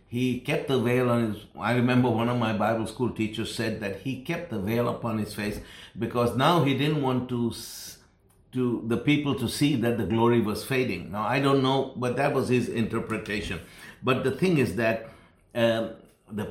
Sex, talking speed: male, 200 wpm